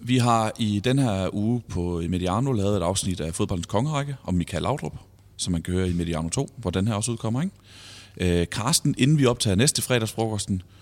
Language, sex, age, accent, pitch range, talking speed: Danish, male, 30-49, native, 95-120 Hz, 205 wpm